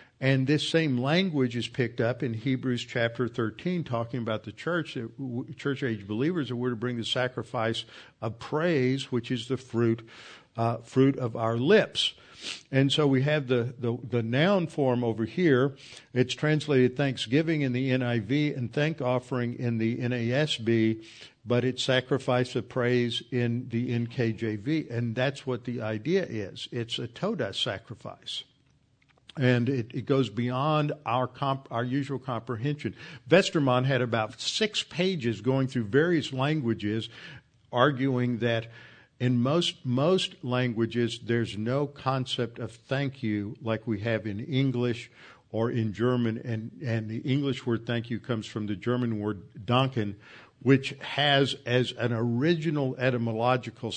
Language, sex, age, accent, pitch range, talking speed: English, male, 50-69, American, 115-135 Hz, 150 wpm